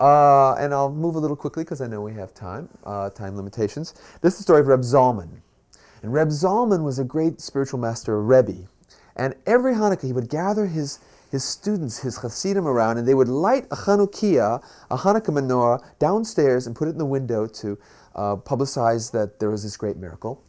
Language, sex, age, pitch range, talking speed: English, male, 40-59, 110-190 Hz, 205 wpm